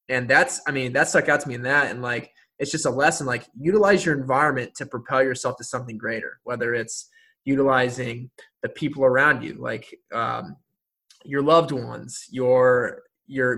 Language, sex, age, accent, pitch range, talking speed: English, male, 20-39, American, 125-155 Hz, 180 wpm